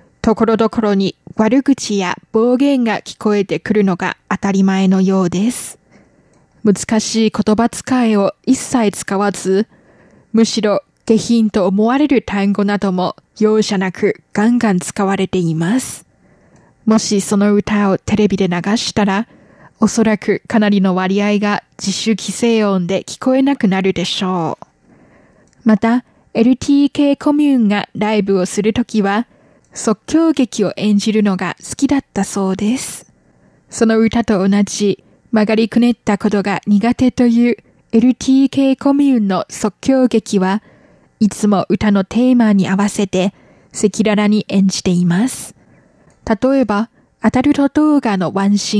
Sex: female